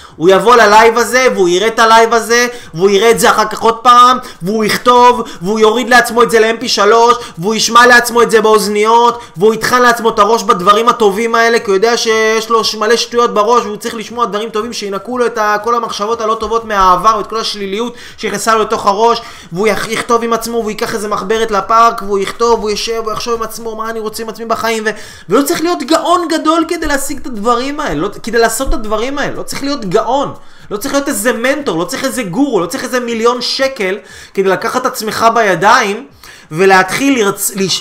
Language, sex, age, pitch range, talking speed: Hebrew, male, 20-39, 215-250 Hz, 165 wpm